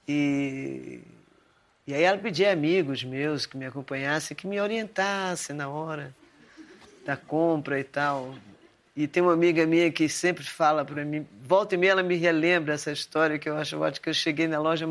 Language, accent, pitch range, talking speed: Portuguese, Brazilian, 150-190 Hz, 185 wpm